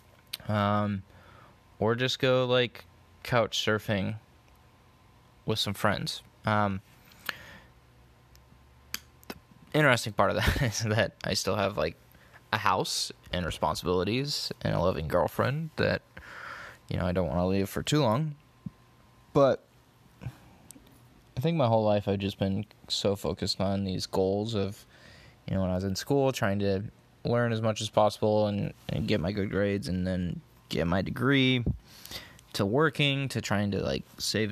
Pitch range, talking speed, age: 100-125 Hz, 150 wpm, 20-39